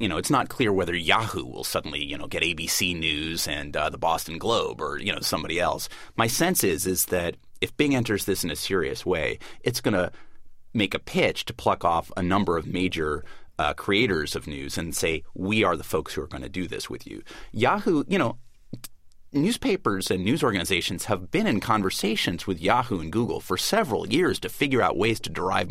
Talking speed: 215 wpm